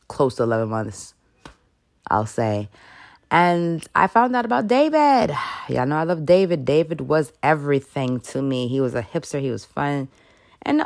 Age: 20-39